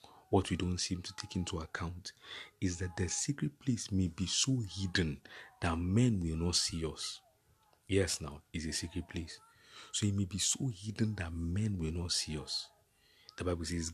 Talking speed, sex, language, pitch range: 190 wpm, male, English, 85-110 Hz